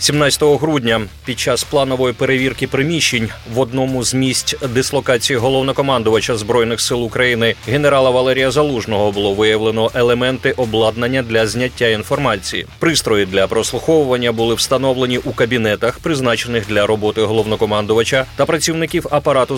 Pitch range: 115-140 Hz